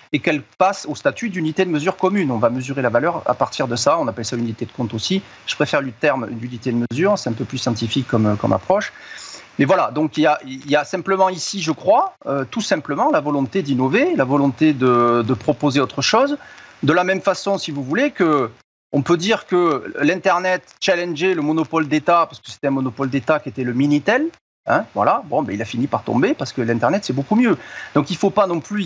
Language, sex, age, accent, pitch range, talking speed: French, male, 40-59, French, 130-180 Hz, 235 wpm